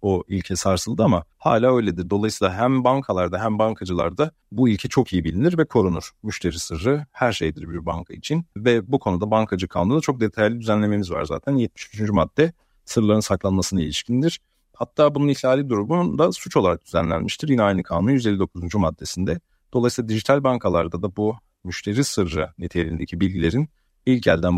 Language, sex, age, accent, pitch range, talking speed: Turkish, male, 40-59, native, 90-125 Hz, 155 wpm